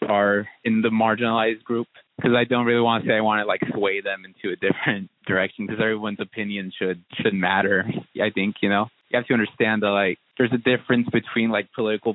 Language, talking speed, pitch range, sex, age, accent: English, 215 wpm, 100-120 Hz, male, 20-39, American